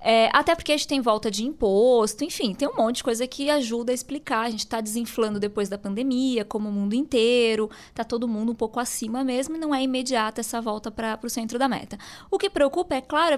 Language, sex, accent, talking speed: Portuguese, female, Brazilian, 240 wpm